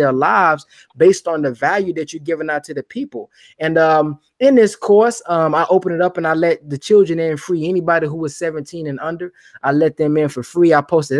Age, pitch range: 20-39, 130-160 Hz